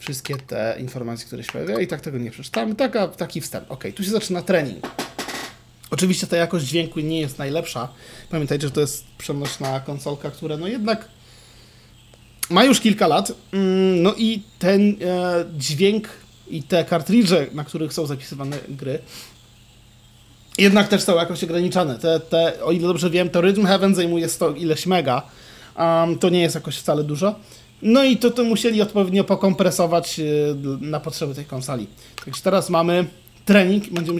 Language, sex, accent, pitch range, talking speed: Polish, male, native, 135-190 Hz, 160 wpm